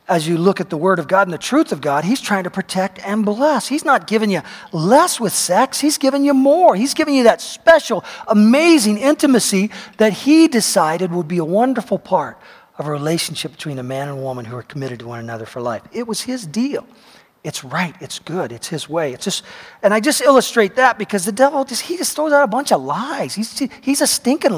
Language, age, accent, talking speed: English, 40-59, American, 235 wpm